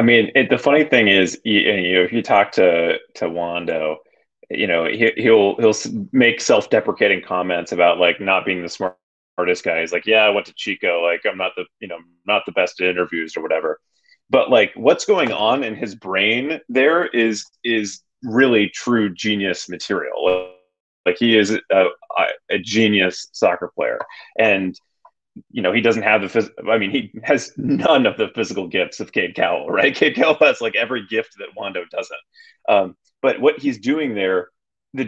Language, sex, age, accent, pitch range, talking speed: English, male, 30-49, American, 90-125 Hz, 190 wpm